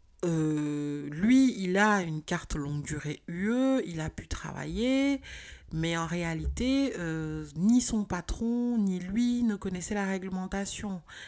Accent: French